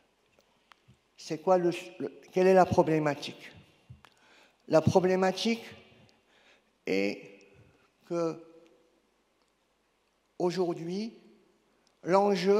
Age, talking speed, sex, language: 50-69, 65 wpm, male, French